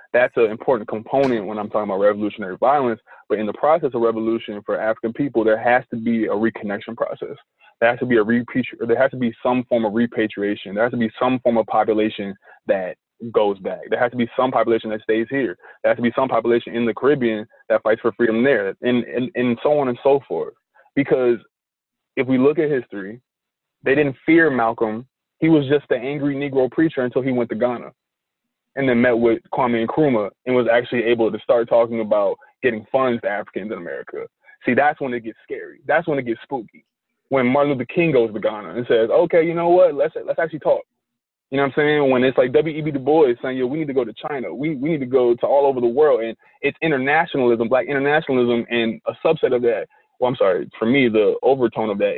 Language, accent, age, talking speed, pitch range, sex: English, American, 20-39, 230 wpm, 115-145 Hz, male